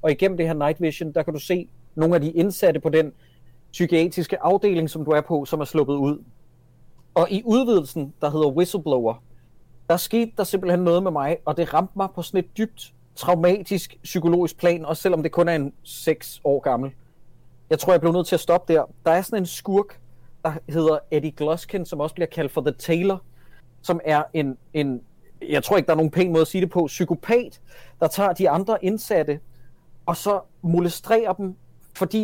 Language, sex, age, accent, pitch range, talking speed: Danish, male, 30-49, native, 150-190 Hz, 205 wpm